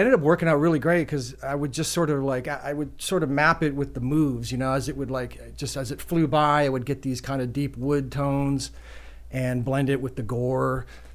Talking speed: 260 wpm